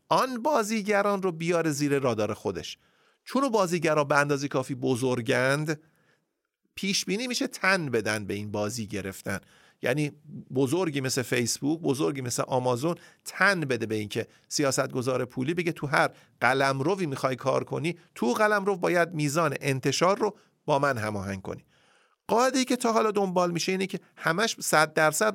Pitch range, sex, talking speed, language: 135-185 Hz, male, 155 wpm, Persian